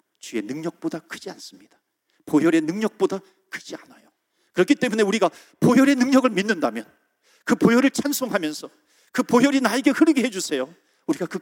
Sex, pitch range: male, 185-280 Hz